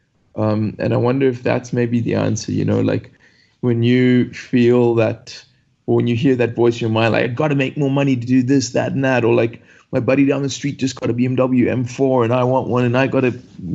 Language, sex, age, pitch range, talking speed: English, male, 20-39, 110-125 Hz, 255 wpm